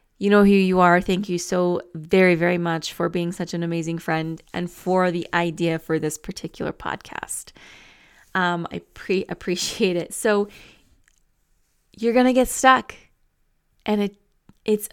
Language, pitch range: English, 170-210 Hz